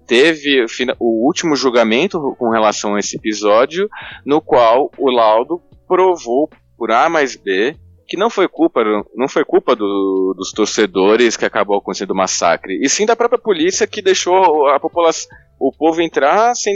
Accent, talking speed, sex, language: Brazilian, 170 wpm, male, Portuguese